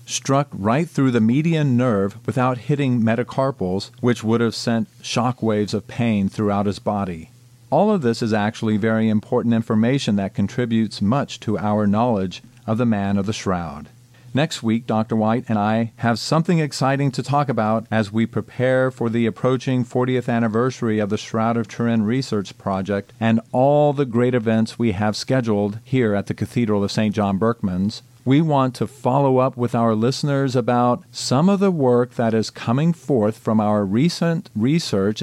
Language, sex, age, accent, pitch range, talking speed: English, male, 40-59, American, 110-130 Hz, 175 wpm